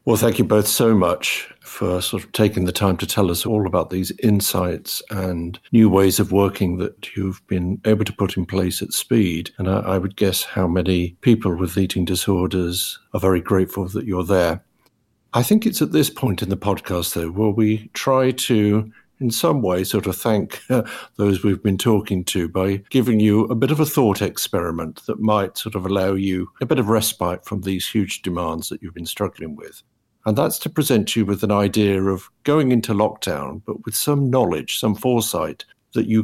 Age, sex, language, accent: 50-69, male, English, British